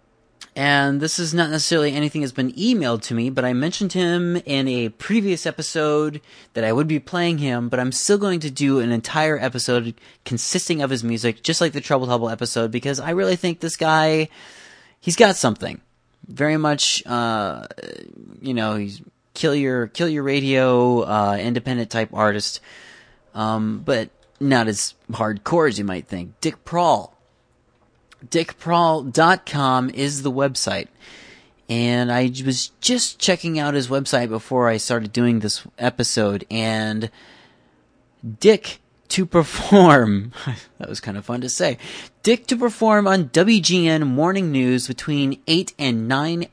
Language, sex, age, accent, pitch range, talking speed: English, male, 30-49, American, 120-160 Hz, 150 wpm